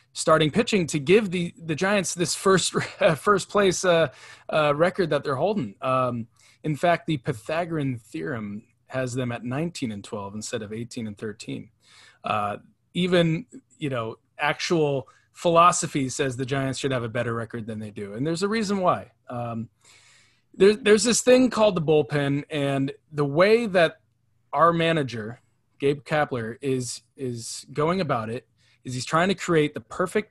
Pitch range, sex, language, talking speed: 120-170 Hz, male, English, 170 wpm